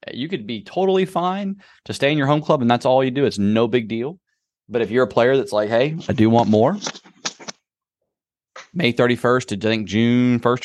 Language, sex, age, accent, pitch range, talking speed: English, male, 30-49, American, 105-130 Hz, 220 wpm